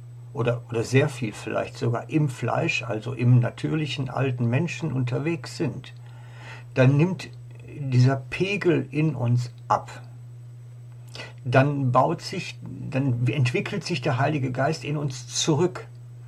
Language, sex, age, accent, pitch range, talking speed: German, male, 60-79, German, 120-140 Hz, 125 wpm